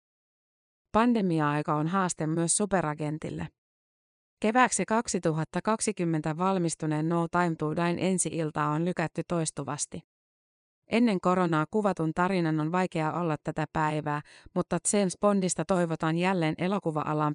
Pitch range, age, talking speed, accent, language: 155-185 Hz, 30-49, 105 wpm, native, Finnish